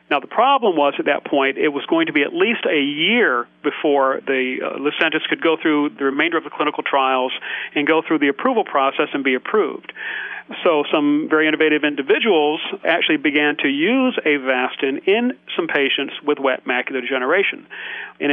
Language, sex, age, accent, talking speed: English, male, 40-59, American, 185 wpm